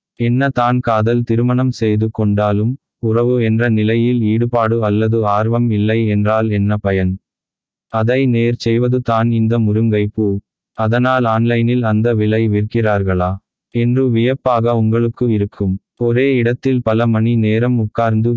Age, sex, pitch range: 20-39, male, 105-120 Hz